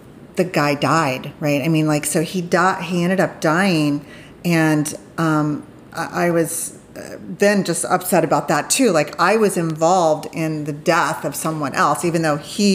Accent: American